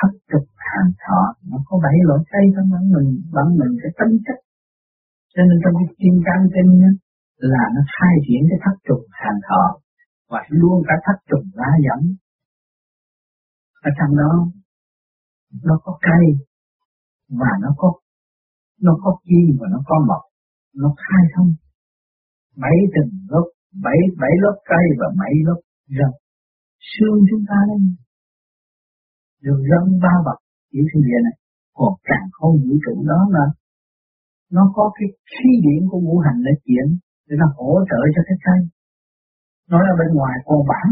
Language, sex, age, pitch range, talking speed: Vietnamese, male, 50-69, 150-190 Hz, 150 wpm